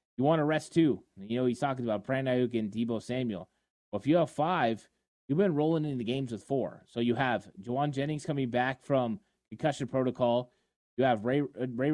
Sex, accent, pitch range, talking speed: male, American, 125-145 Hz, 200 wpm